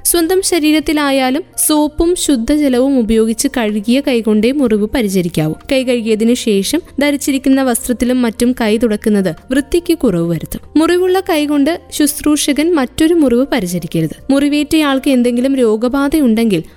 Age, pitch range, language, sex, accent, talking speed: 20-39, 225-285 Hz, Malayalam, female, native, 100 wpm